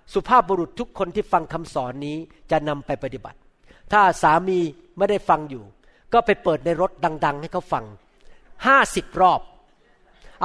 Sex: male